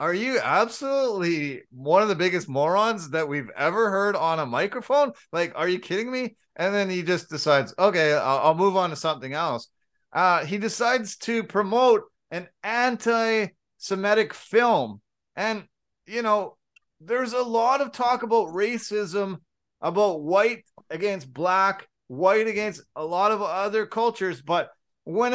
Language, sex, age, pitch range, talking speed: English, male, 30-49, 170-225 Hz, 150 wpm